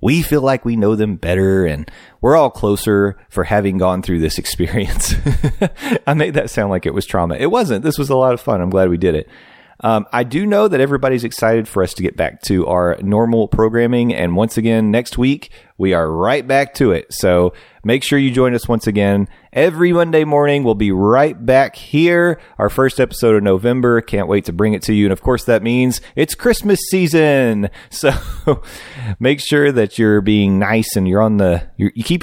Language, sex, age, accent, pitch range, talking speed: English, male, 30-49, American, 95-125 Hz, 215 wpm